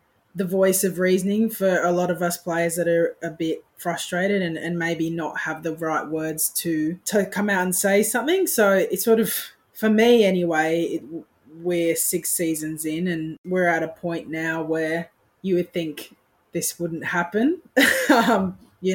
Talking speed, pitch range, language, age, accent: 180 wpm, 160-190 Hz, English, 20-39, Australian